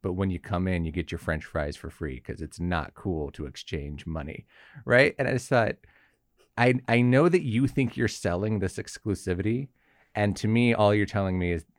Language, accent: English, American